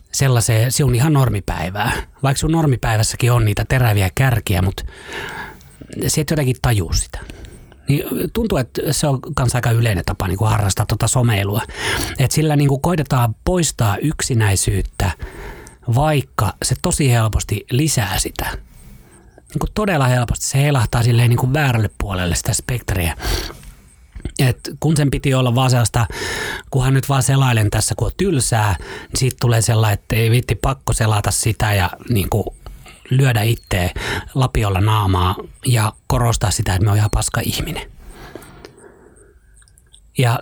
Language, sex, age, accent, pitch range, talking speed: Finnish, male, 30-49, native, 105-135 Hz, 140 wpm